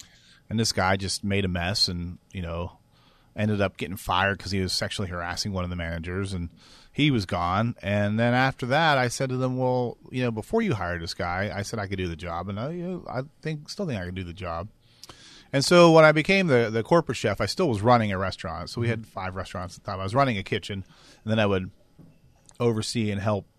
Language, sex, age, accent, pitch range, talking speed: English, male, 30-49, American, 95-115 Hz, 250 wpm